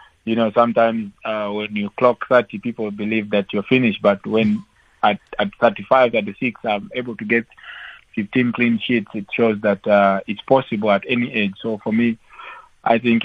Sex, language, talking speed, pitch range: male, English, 190 wpm, 100-120 Hz